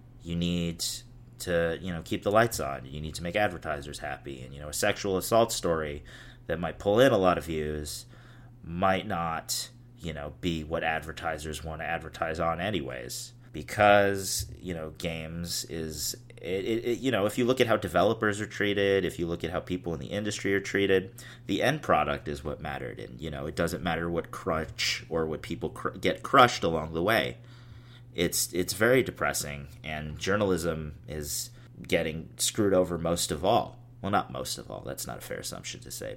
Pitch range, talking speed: 80-120 Hz, 195 wpm